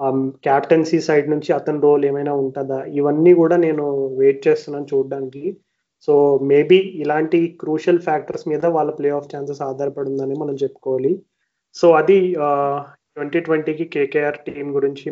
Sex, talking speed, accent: male, 130 wpm, native